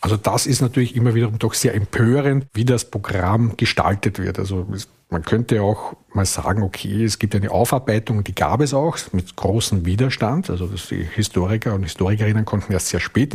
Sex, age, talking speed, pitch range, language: male, 50-69, 185 wpm, 100-115 Hz, German